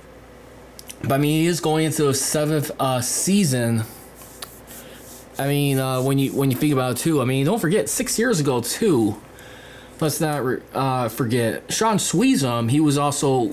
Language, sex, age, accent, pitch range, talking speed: English, male, 20-39, American, 125-150 Hz, 175 wpm